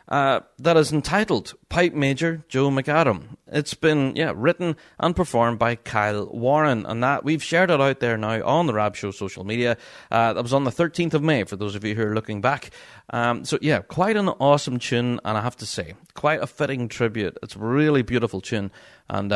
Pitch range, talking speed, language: 115-160 Hz, 215 wpm, English